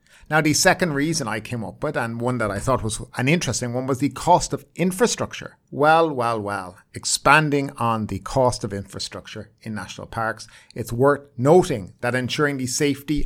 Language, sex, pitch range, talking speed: English, male, 115-150 Hz, 185 wpm